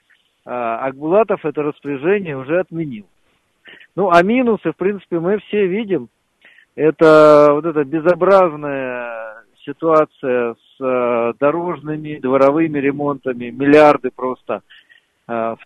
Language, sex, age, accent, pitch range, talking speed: Russian, male, 40-59, native, 130-175 Hz, 95 wpm